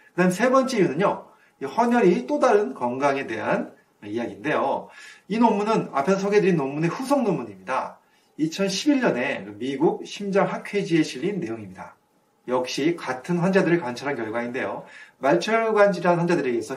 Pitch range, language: 140-205 Hz, Korean